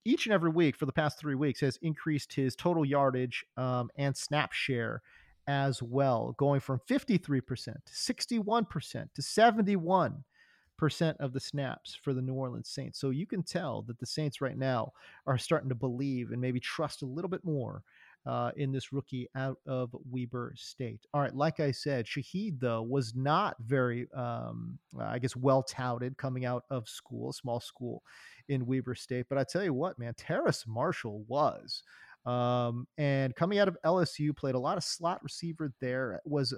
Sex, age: male, 30-49